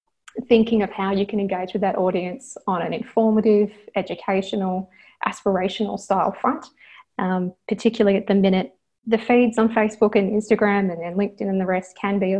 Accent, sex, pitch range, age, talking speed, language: Australian, female, 190-225 Hz, 20-39, 175 wpm, English